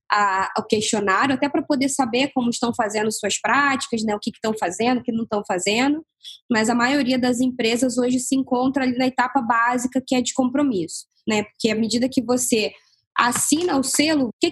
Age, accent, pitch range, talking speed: 10-29, Brazilian, 225-280 Hz, 200 wpm